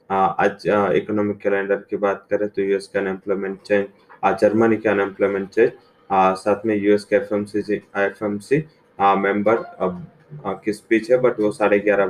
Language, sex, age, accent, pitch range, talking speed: English, male, 20-39, Indian, 100-110 Hz, 150 wpm